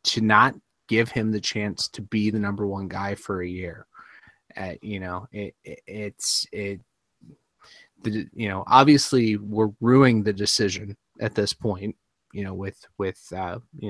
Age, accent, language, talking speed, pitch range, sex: 20-39, American, English, 175 wpm, 100-115 Hz, male